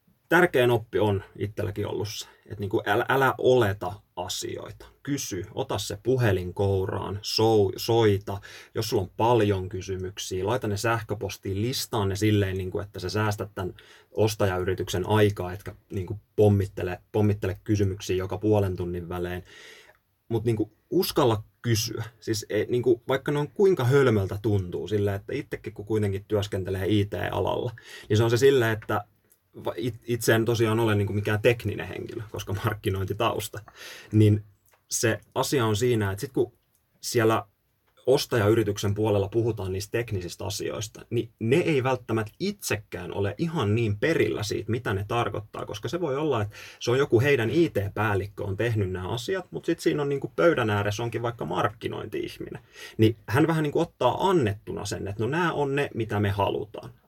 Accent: native